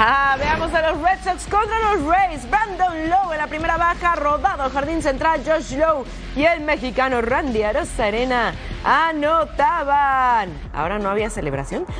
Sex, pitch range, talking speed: female, 260-350 Hz, 160 wpm